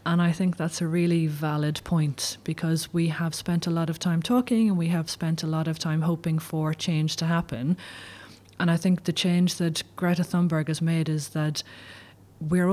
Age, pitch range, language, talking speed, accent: 30-49, 155-175 Hz, English, 205 wpm, Irish